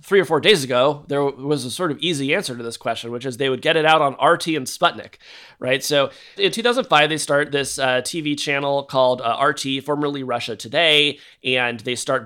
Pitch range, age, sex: 125-150 Hz, 30-49, male